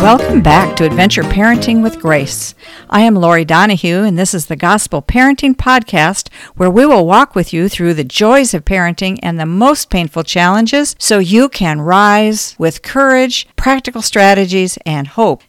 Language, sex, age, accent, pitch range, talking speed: English, female, 50-69, American, 160-215 Hz, 170 wpm